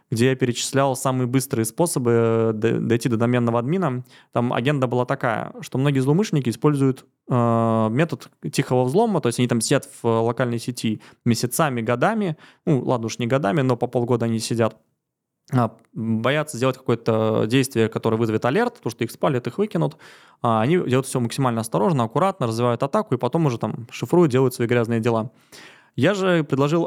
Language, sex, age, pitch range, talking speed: Russian, male, 20-39, 115-145 Hz, 165 wpm